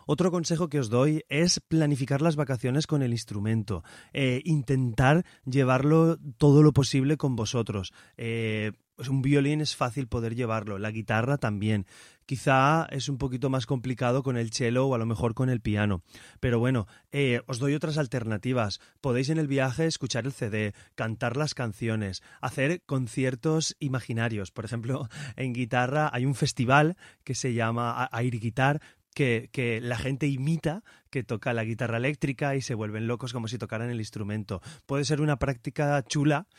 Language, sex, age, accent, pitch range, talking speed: Spanish, male, 30-49, Spanish, 110-140 Hz, 165 wpm